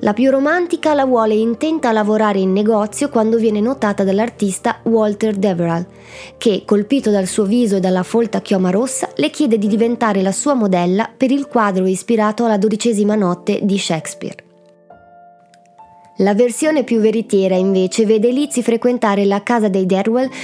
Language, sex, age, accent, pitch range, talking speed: Italian, female, 20-39, native, 195-250 Hz, 160 wpm